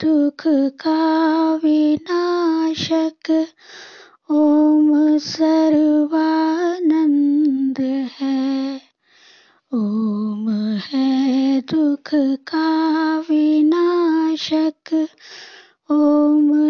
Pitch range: 265-320 Hz